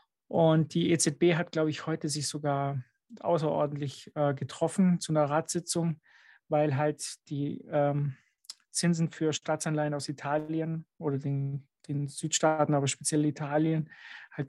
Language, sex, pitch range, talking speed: German, male, 155-180 Hz, 135 wpm